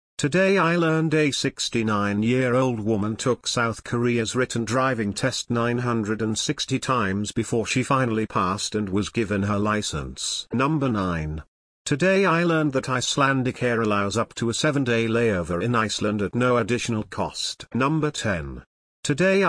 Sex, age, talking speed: male, 50-69, 140 wpm